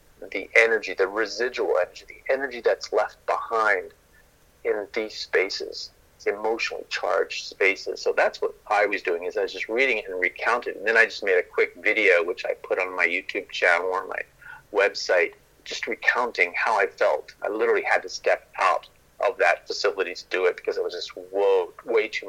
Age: 40-59